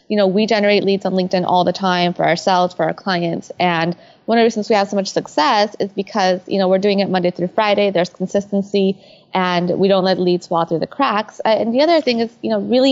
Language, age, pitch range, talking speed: English, 20-39, 185-225 Hz, 250 wpm